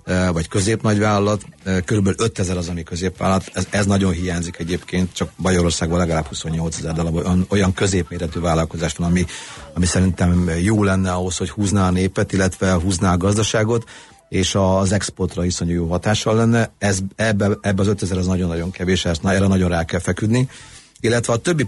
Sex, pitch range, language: male, 90-110 Hz, Hungarian